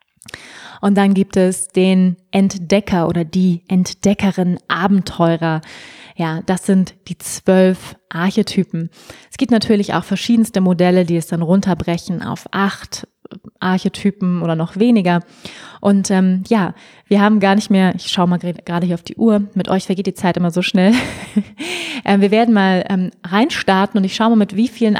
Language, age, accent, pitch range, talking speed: German, 20-39, German, 180-210 Hz, 165 wpm